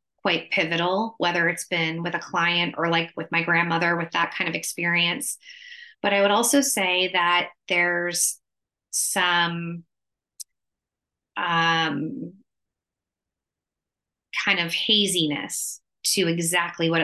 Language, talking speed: English, 115 wpm